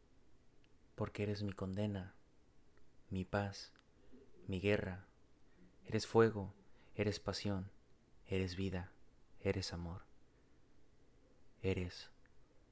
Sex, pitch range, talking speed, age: male, 95-110 Hz, 80 wpm, 30-49